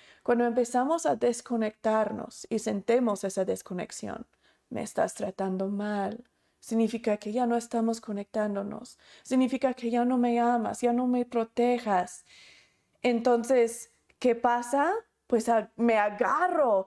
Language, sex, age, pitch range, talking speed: Spanish, female, 30-49, 210-290 Hz, 125 wpm